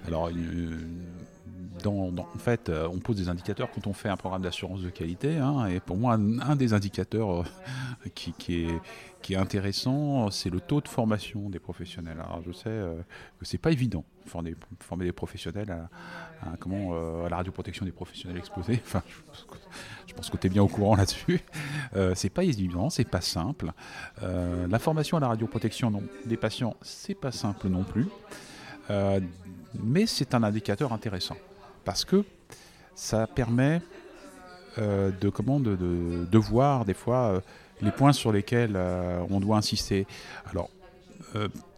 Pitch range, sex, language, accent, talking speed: 90-120 Hz, male, French, French, 175 wpm